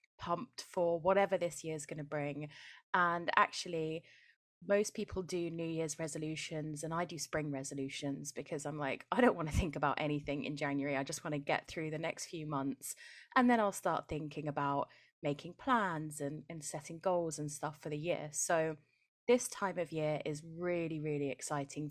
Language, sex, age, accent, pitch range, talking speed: English, female, 20-39, British, 150-185 Hz, 185 wpm